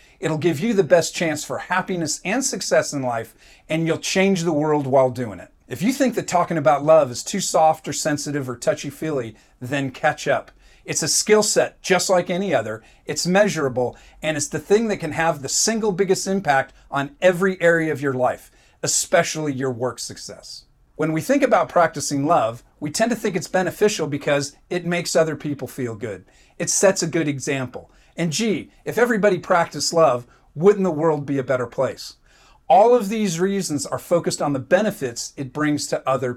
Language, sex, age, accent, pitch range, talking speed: English, male, 40-59, American, 135-185 Hz, 195 wpm